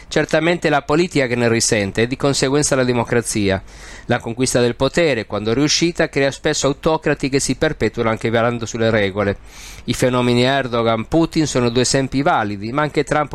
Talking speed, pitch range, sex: 165 wpm, 115-145 Hz, male